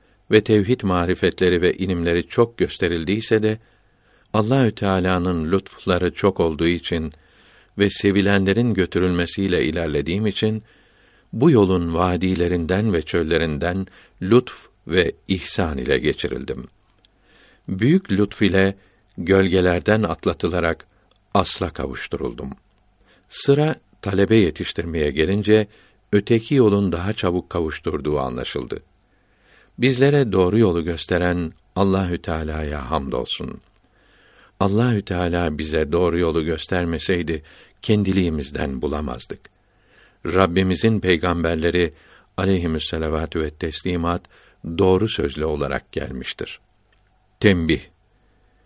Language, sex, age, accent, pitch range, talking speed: Turkish, male, 60-79, native, 85-105 Hz, 90 wpm